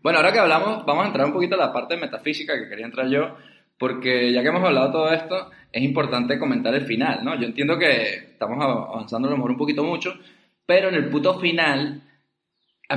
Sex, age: male, 20-39